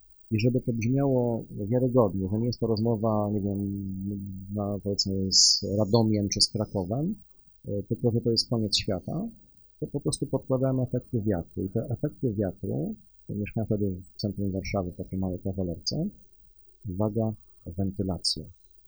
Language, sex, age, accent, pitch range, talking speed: Polish, male, 50-69, native, 100-120 Hz, 145 wpm